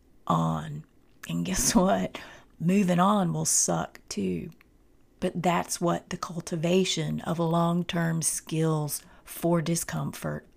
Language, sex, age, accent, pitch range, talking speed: English, female, 40-59, American, 160-200 Hz, 110 wpm